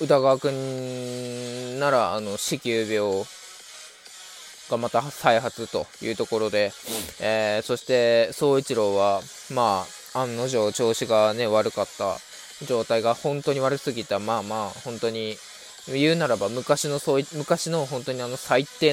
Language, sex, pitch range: Japanese, male, 115-150 Hz